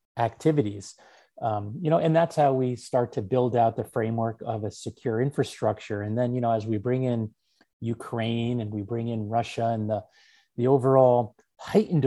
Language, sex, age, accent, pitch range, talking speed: English, male, 30-49, American, 120-155 Hz, 185 wpm